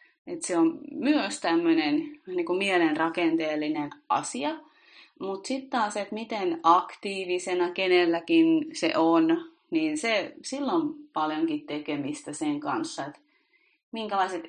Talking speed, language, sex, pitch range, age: 110 wpm, Finnish, female, 160-260 Hz, 30-49